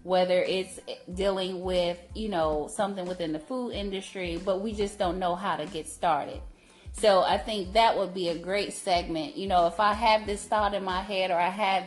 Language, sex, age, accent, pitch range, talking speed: English, female, 30-49, American, 180-210 Hz, 210 wpm